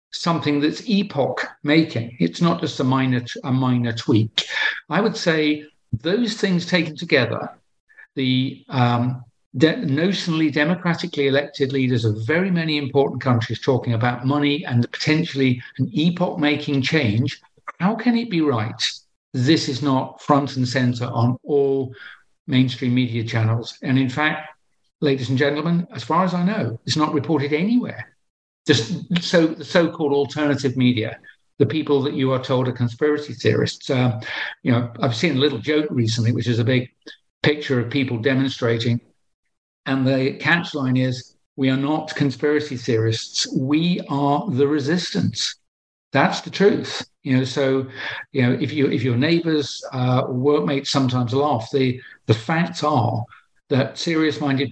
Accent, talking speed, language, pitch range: British, 150 wpm, English, 125-155 Hz